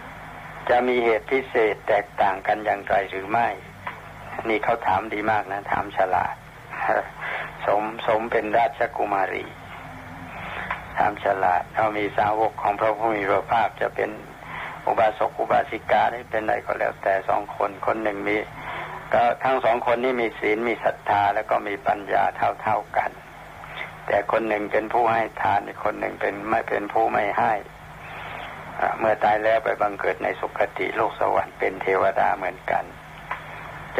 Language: Thai